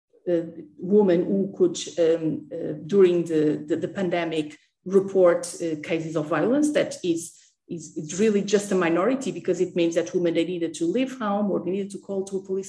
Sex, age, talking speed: female, 40-59, 205 wpm